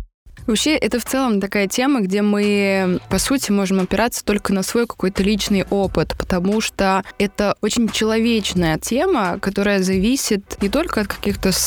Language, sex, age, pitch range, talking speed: Russian, female, 20-39, 185-235 Hz, 155 wpm